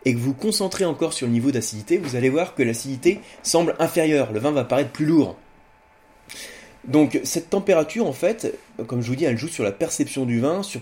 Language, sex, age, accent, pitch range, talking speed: French, male, 30-49, French, 115-165 Hz, 215 wpm